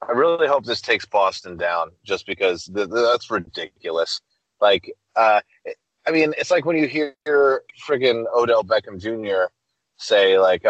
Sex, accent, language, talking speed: male, American, English, 155 wpm